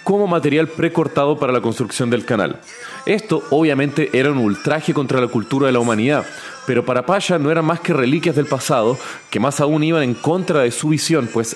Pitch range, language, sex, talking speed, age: 120-150 Hz, Spanish, male, 200 wpm, 30-49